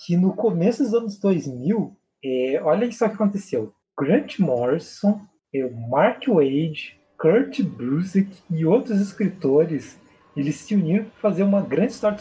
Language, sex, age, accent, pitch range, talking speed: Portuguese, male, 20-39, Brazilian, 165-215 Hz, 145 wpm